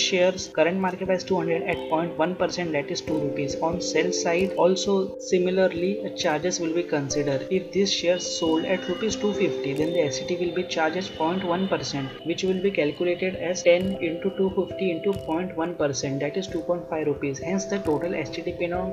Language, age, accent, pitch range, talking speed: English, 20-39, Indian, 155-185 Hz, 175 wpm